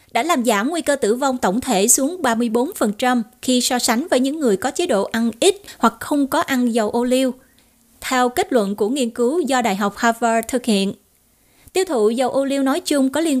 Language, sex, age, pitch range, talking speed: Vietnamese, female, 20-39, 230-275 Hz, 225 wpm